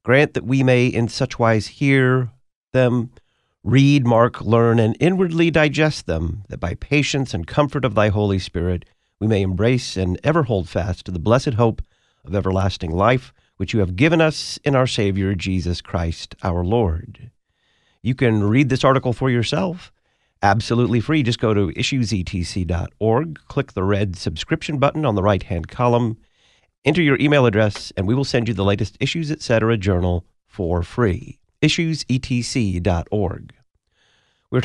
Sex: male